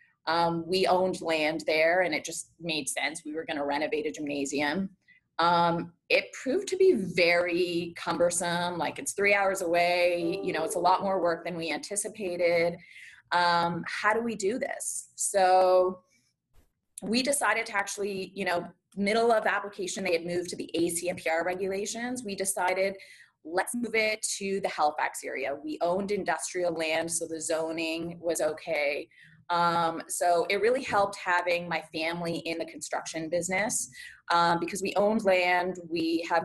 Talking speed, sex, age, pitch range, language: 165 wpm, female, 20-39, 165-195 Hz, English